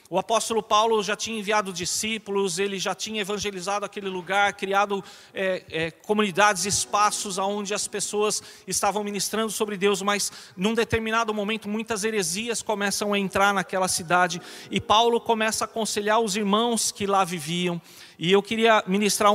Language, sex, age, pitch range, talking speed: Portuguese, male, 40-59, 190-225 Hz, 150 wpm